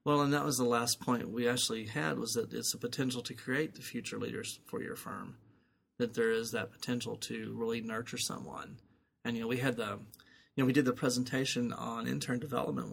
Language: English